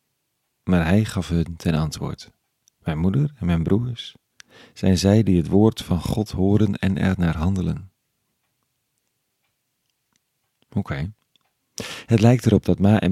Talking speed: 135 wpm